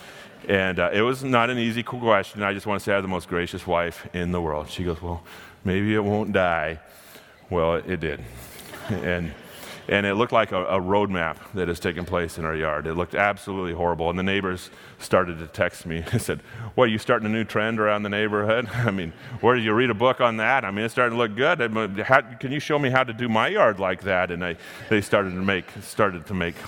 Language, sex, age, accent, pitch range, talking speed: English, male, 30-49, American, 90-110 Hz, 245 wpm